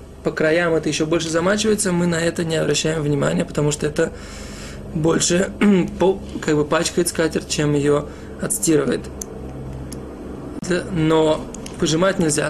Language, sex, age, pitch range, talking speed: Russian, male, 20-39, 140-170 Hz, 115 wpm